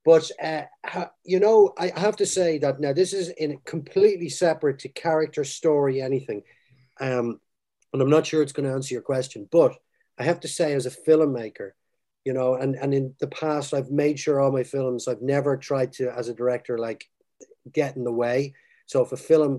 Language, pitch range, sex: English, 125-155 Hz, male